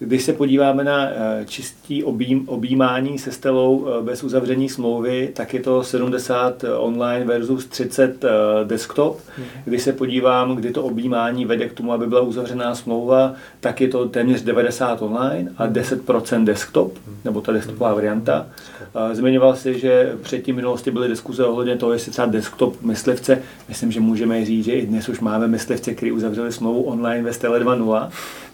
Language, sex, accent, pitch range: Czech, male, native, 115-130 Hz